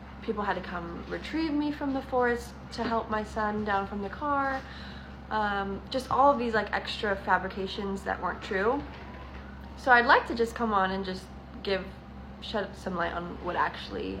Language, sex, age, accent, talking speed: English, female, 20-39, American, 180 wpm